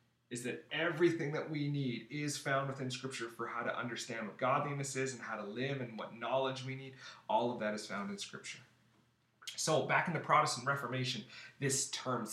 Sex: male